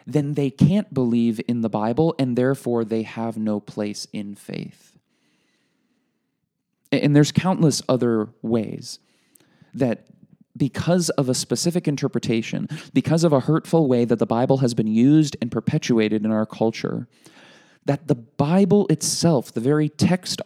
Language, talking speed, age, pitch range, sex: English, 145 wpm, 20-39, 120-165 Hz, male